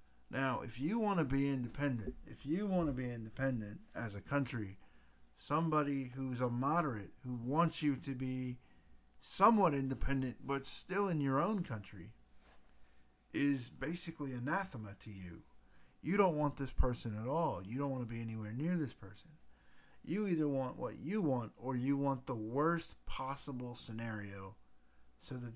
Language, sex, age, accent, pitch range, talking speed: English, male, 50-69, American, 100-140 Hz, 160 wpm